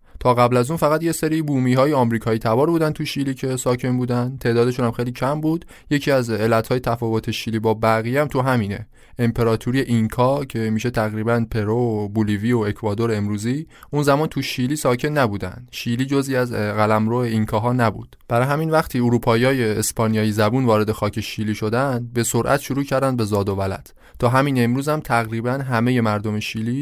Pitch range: 110-130 Hz